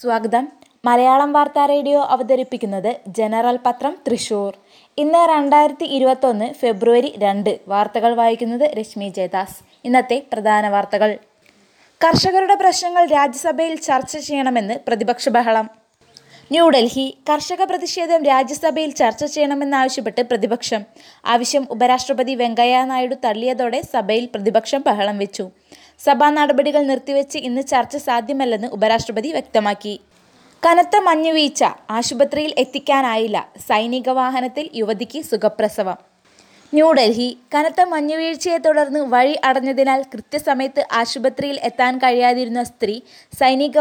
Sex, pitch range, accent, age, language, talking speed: female, 230-290 Hz, native, 20-39, Malayalam, 95 wpm